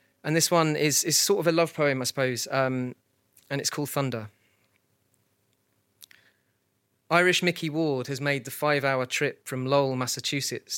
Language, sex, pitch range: English, male, 115-140 Hz